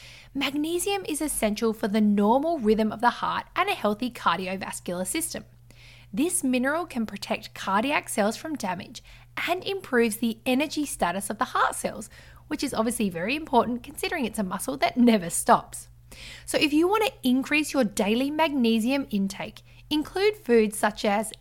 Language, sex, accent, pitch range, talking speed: English, female, Australian, 200-285 Hz, 165 wpm